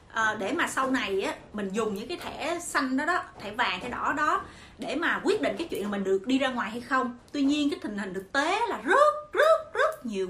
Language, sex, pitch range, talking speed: Vietnamese, female, 225-335 Hz, 260 wpm